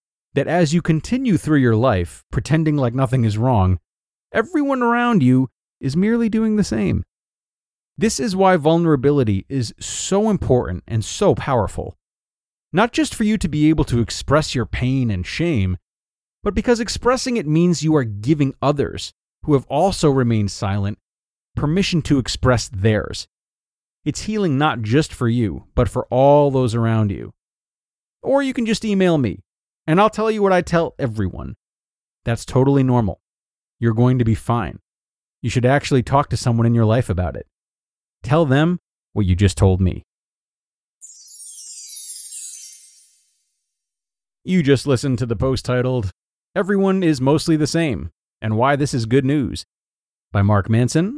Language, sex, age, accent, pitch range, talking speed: English, male, 30-49, American, 110-165 Hz, 155 wpm